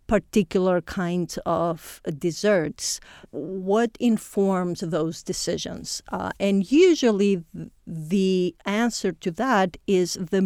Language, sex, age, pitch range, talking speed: English, female, 50-69, 175-215 Hz, 100 wpm